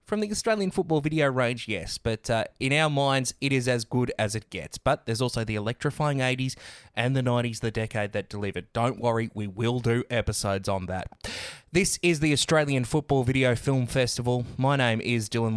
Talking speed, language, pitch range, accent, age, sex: 200 wpm, English, 110-140 Hz, Australian, 20-39, male